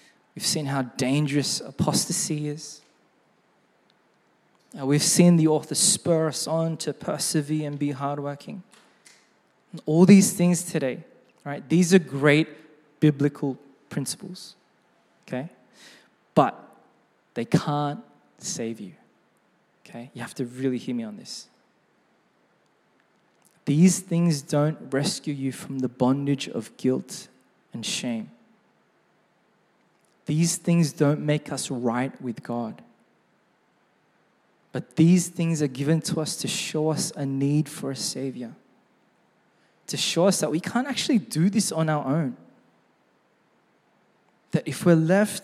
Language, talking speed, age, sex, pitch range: English, 125 wpm, 20-39, male, 145-180 Hz